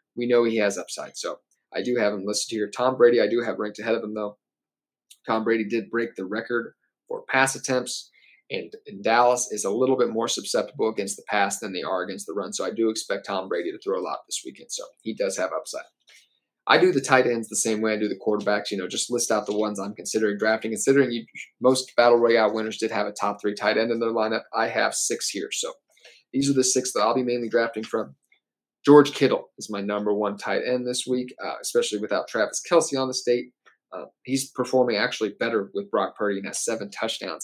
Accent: American